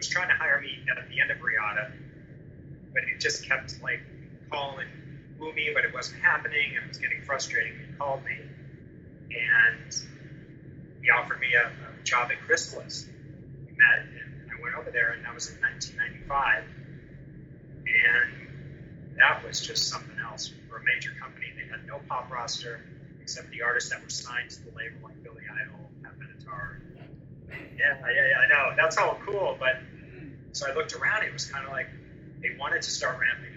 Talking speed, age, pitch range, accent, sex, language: 180 wpm, 30-49, 135-150 Hz, American, male, English